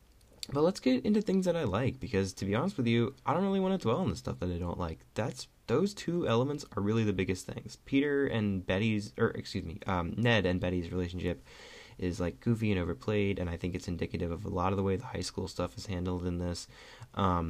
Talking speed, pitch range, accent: 250 wpm, 90-120 Hz, American